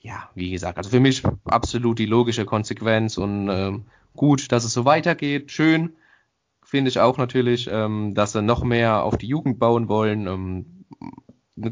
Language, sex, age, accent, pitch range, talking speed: German, male, 20-39, German, 105-125 Hz, 175 wpm